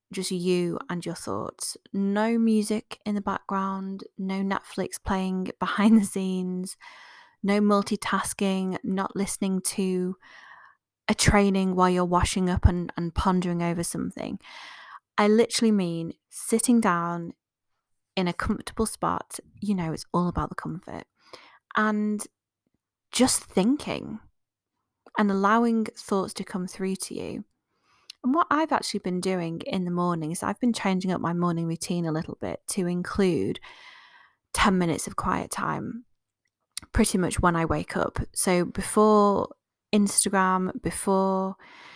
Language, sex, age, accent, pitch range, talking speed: English, female, 20-39, British, 185-215 Hz, 135 wpm